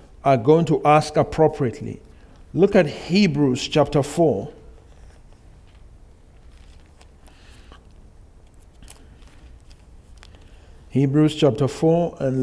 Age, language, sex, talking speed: 60-79, English, male, 70 wpm